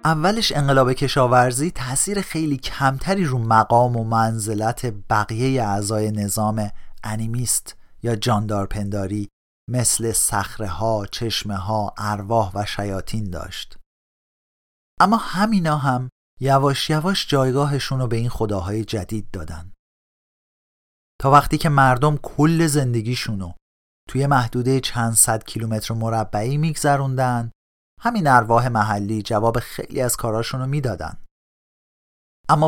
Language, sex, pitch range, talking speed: Persian, male, 110-145 Hz, 105 wpm